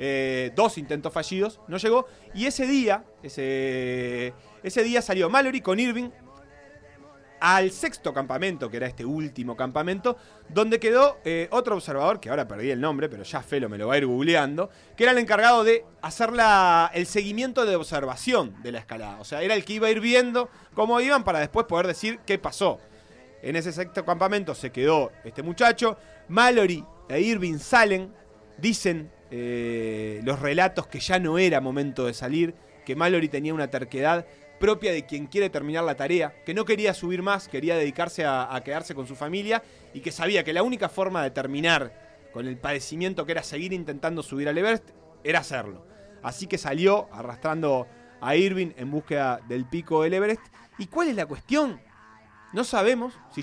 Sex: male